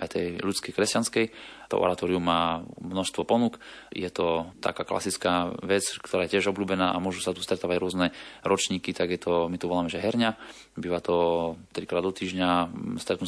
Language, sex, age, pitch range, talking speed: Slovak, male, 20-39, 85-95 Hz, 175 wpm